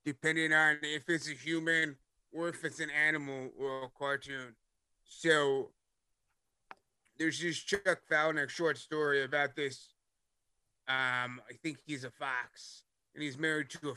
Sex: male